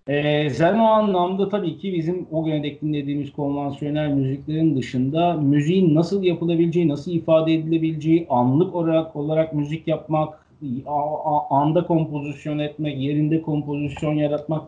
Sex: male